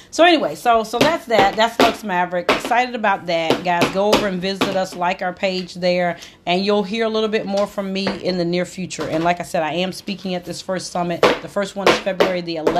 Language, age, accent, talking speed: English, 40-59, American, 245 wpm